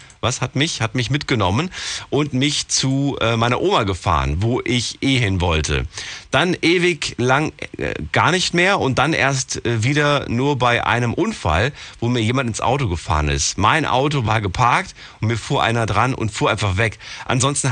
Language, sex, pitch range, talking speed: German, male, 95-130 Hz, 185 wpm